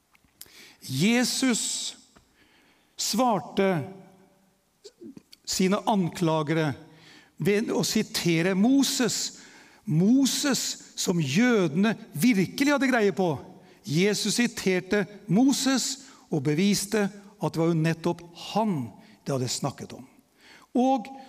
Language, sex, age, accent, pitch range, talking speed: English, male, 60-79, Swedish, 175-230 Hz, 80 wpm